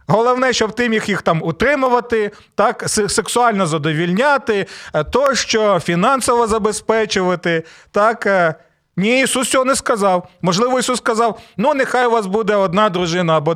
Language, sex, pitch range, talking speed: Ukrainian, male, 170-230 Hz, 135 wpm